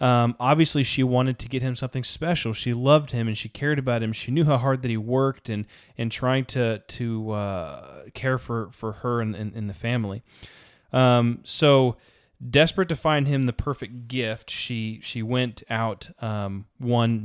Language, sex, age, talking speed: English, male, 30-49, 190 wpm